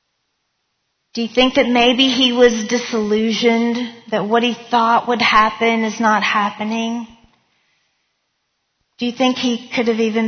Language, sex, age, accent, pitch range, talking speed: English, female, 40-59, American, 215-250 Hz, 140 wpm